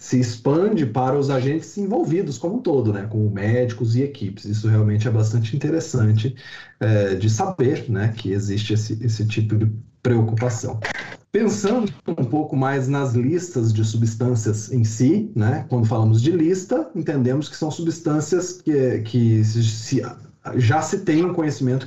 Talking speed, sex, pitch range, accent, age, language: 160 wpm, male, 110-155 Hz, Brazilian, 40-59, Portuguese